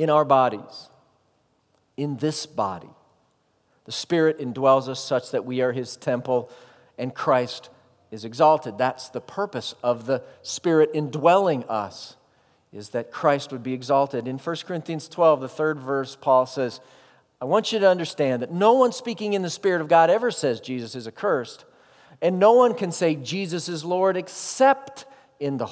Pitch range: 130-165 Hz